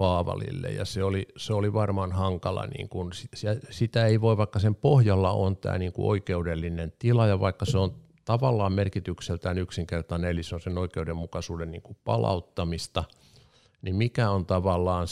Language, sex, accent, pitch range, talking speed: Finnish, male, native, 95-125 Hz, 165 wpm